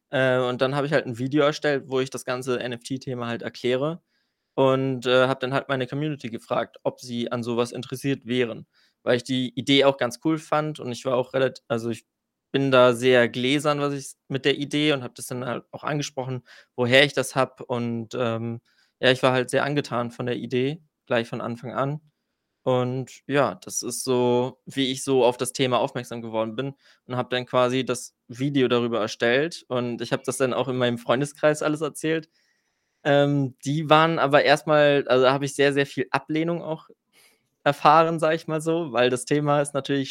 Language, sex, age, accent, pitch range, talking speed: German, male, 20-39, German, 125-145 Hz, 200 wpm